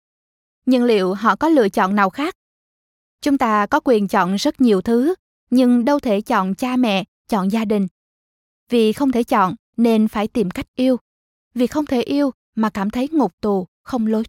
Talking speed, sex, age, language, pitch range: 190 wpm, female, 20-39, Vietnamese, 215-260 Hz